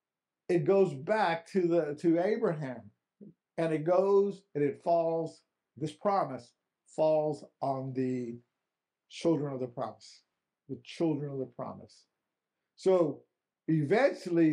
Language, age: English, 50-69